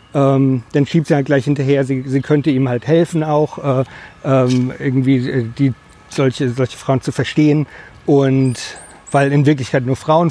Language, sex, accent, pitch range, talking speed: German, male, German, 135-155 Hz, 175 wpm